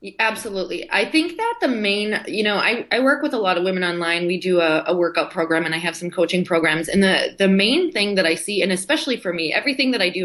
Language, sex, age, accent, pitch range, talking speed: English, female, 20-39, American, 170-230 Hz, 265 wpm